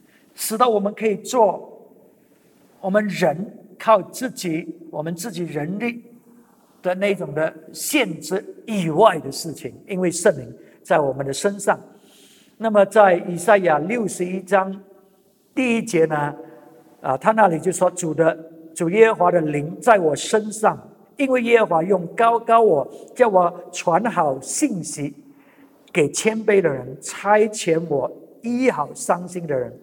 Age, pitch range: 50-69, 160-220 Hz